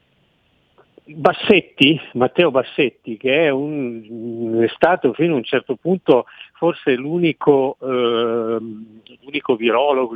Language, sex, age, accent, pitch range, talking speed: Italian, male, 50-69, native, 115-145 Hz, 105 wpm